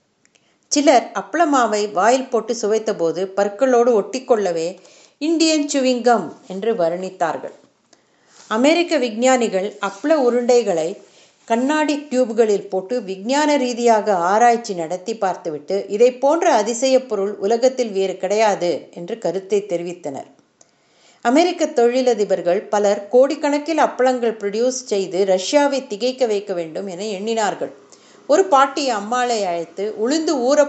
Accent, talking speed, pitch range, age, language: native, 100 wpm, 205-265 Hz, 50-69, Tamil